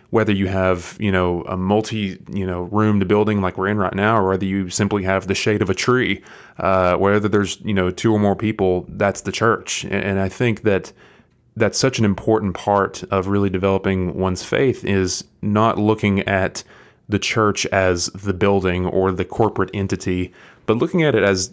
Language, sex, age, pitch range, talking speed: English, male, 20-39, 95-105 Hz, 195 wpm